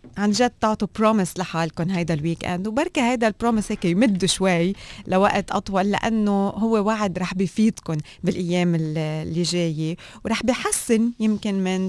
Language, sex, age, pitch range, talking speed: Arabic, female, 20-39, 170-210 Hz, 140 wpm